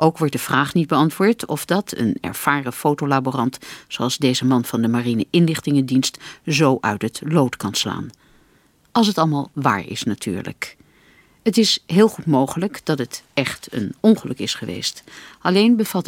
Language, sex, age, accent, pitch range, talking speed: Dutch, female, 50-69, Dutch, 130-180 Hz, 165 wpm